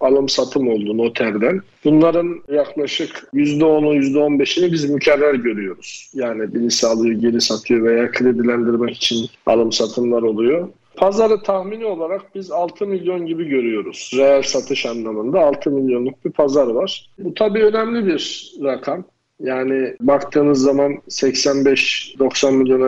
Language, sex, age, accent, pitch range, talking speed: Turkish, male, 50-69, native, 130-160 Hz, 120 wpm